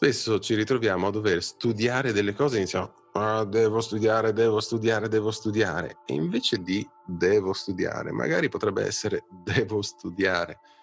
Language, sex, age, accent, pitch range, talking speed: Italian, male, 30-49, native, 95-115 Hz, 155 wpm